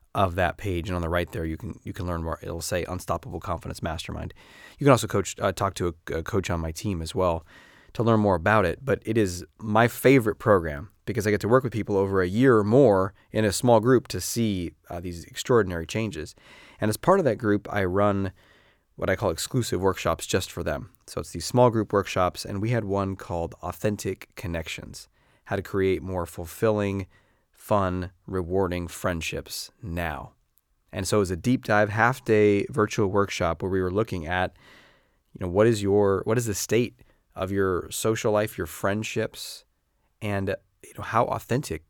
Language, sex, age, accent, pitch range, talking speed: English, male, 30-49, American, 90-110 Hz, 200 wpm